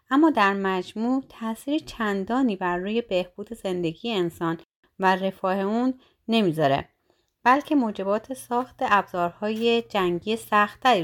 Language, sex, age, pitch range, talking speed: Persian, female, 30-49, 180-230 Hz, 110 wpm